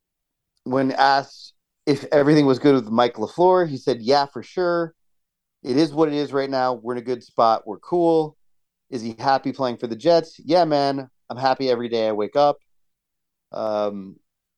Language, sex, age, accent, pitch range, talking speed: English, male, 30-49, American, 110-135 Hz, 185 wpm